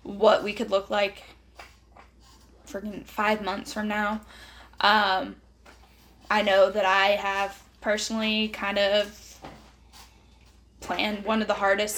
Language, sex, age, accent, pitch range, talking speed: English, female, 10-29, American, 195-215 Hz, 120 wpm